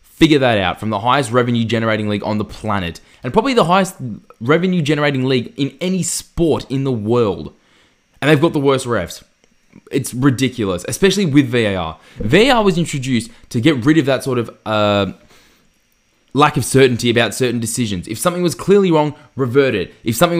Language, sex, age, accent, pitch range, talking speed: English, male, 20-39, Australian, 110-150 Hz, 175 wpm